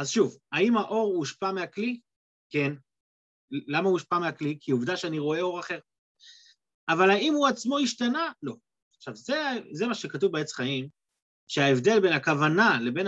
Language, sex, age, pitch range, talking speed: Hebrew, male, 30-49, 150-240 Hz, 155 wpm